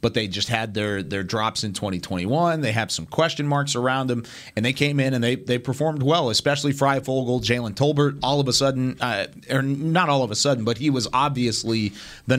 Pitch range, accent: 110-135 Hz, American